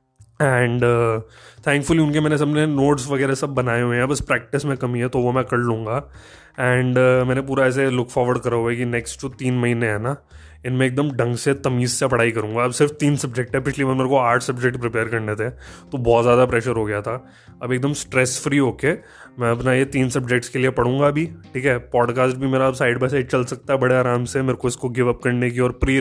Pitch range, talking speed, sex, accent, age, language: 120-150 Hz, 250 wpm, male, native, 20-39, Hindi